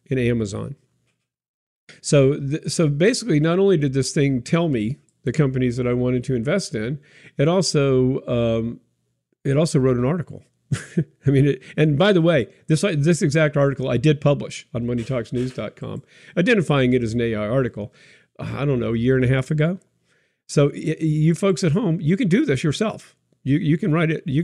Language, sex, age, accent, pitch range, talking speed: English, male, 50-69, American, 130-165 Hz, 190 wpm